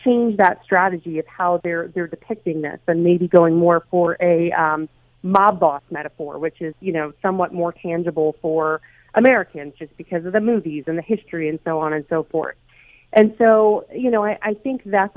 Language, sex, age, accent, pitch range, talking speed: English, female, 40-59, American, 160-195 Hz, 200 wpm